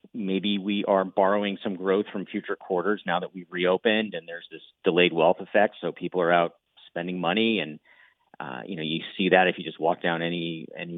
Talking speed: 215 wpm